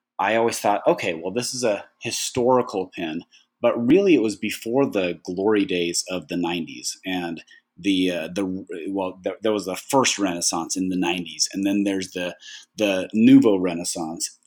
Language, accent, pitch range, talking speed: English, American, 95-120 Hz, 170 wpm